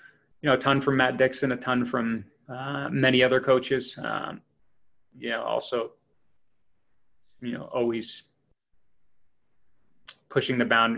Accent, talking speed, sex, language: American, 125 wpm, male, English